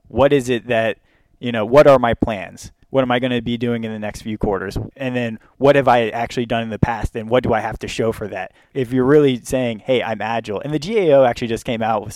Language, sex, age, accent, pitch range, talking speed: English, male, 20-39, American, 115-135 Hz, 275 wpm